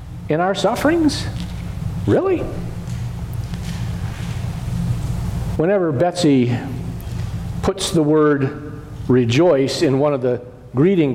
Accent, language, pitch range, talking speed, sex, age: American, English, 125-180 Hz, 80 wpm, male, 50-69